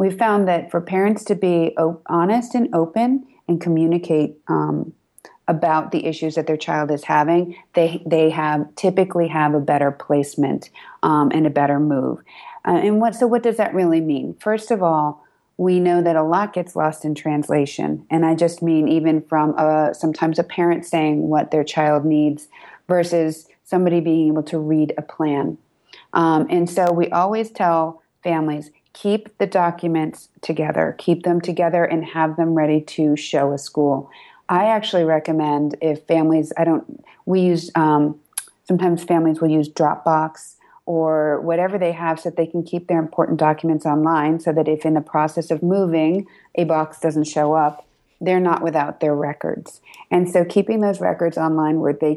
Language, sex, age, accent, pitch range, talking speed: English, female, 30-49, American, 155-175 Hz, 175 wpm